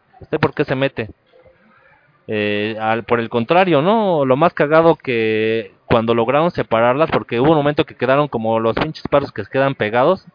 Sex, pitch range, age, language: male, 115-145 Hz, 30-49, Spanish